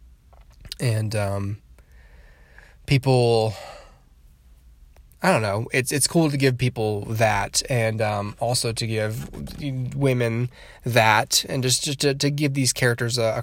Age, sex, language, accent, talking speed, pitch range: 10-29, male, English, American, 135 wpm, 110-140 Hz